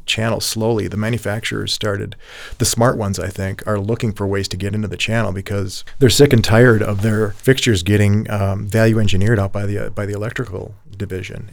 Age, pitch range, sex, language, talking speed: 40-59, 100-115 Hz, male, English, 200 wpm